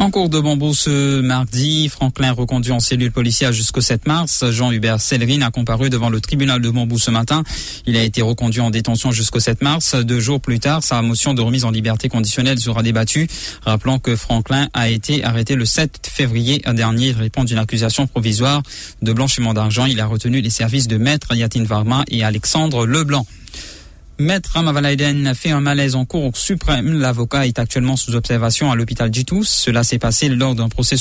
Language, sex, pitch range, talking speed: English, male, 115-140 Hz, 190 wpm